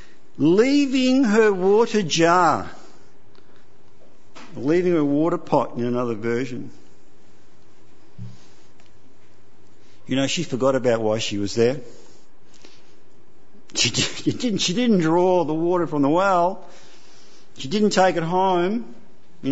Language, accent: English, Australian